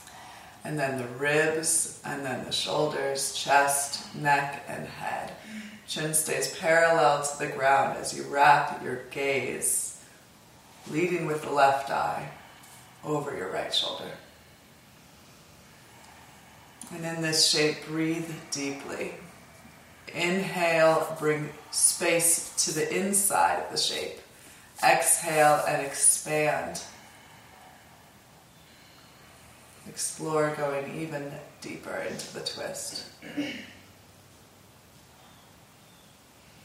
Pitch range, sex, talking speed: 140-170 Hz, female, 95 wpm